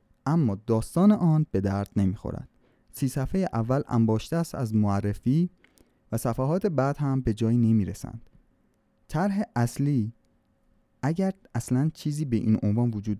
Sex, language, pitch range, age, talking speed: male, Persian, 105-140 Hz, 30-49, 140 wpm